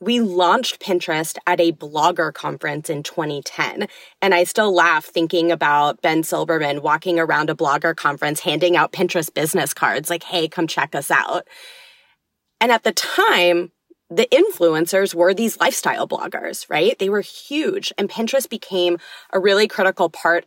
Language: English